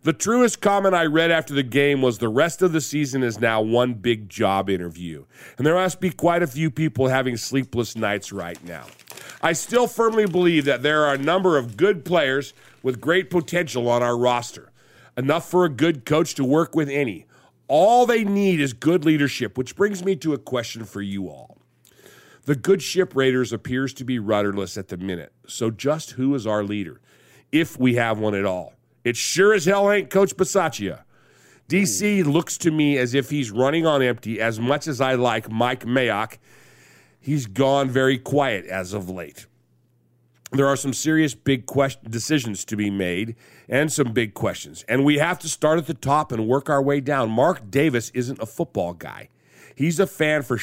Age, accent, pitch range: 50-69, American, 115-155 Hz